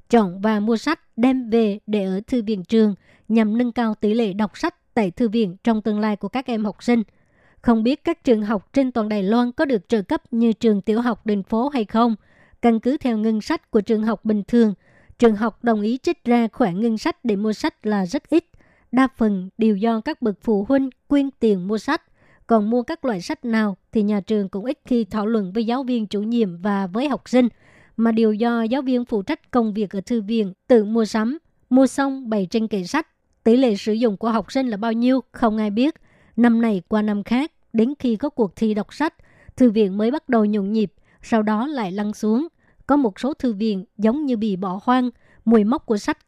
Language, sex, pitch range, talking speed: Vietnamese, male, 215-250 Hz, 235 wpm